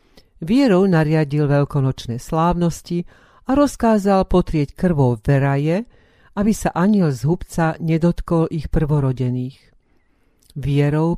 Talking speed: 100 wpm